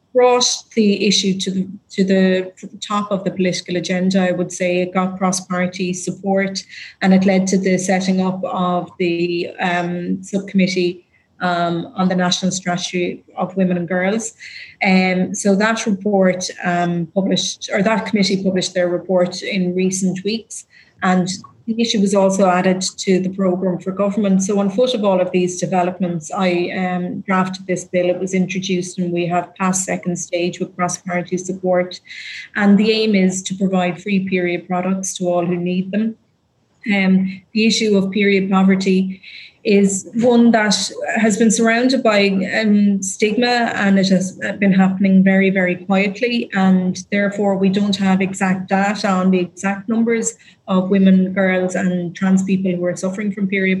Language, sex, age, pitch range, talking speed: English, female, 30-49, 180-200 Hz, 170 wpm